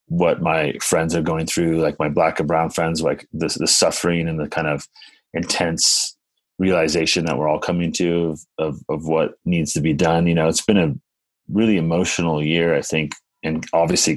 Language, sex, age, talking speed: English, male, 30-49, 200 wpm